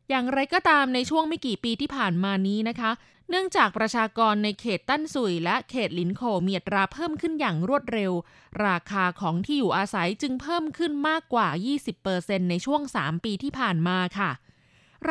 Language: Thai